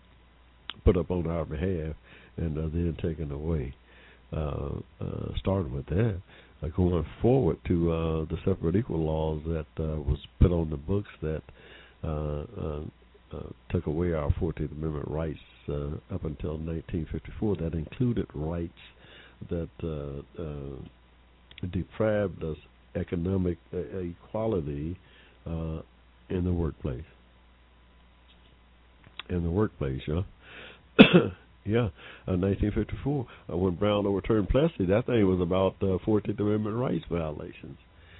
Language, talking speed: English, 130 wpm